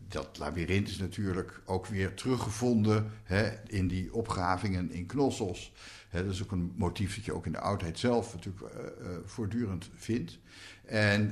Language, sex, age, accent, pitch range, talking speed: Dutch, male, 60-79, Dutch, 90-115 Hz, 170 wpm